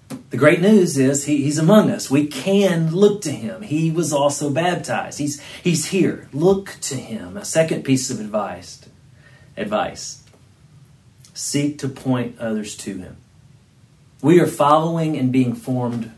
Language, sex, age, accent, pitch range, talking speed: English, male, 40-59, American, 125-150 Hz, 150 wpm